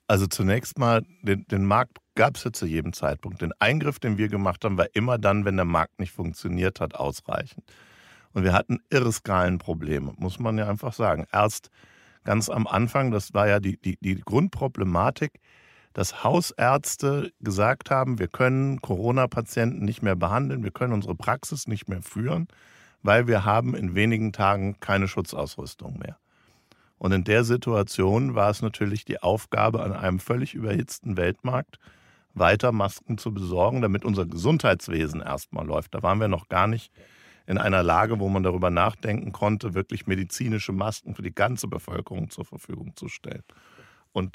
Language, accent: German, German